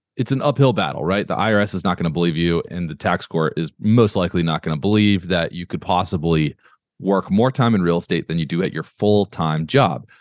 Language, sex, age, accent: English, male, 30-49, American